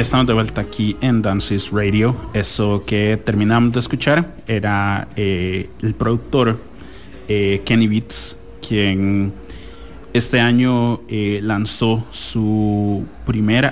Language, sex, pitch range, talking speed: English, male, 95-110 Hz, 115 wpm